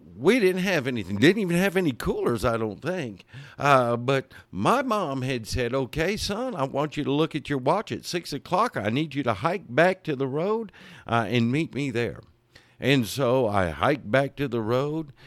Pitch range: 100-140 Hz